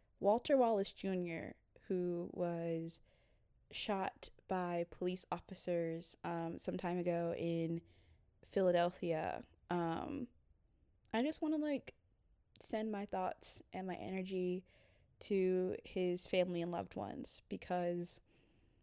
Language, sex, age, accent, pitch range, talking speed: English, female, 20-39, American, 170-190 Hz, 110 wpm